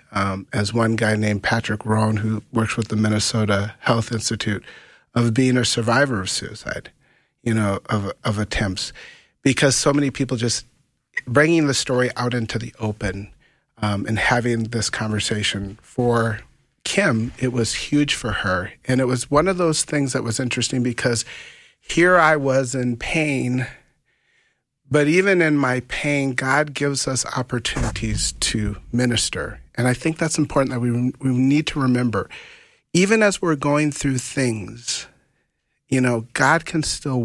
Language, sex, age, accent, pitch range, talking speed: English, male, 40-59, American, 110-135 Hz, 160 wpm